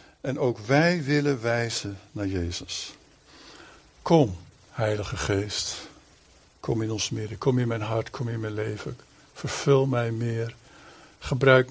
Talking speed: 135 wpm